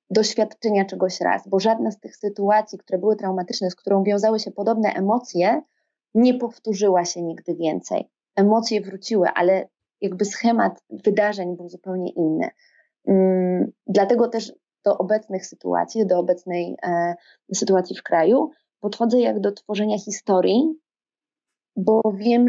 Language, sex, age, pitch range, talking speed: Polish, female, 20-39, 185-220 Hz, 130 wpm